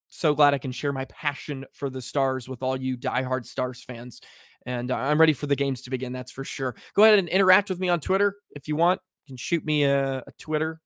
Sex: male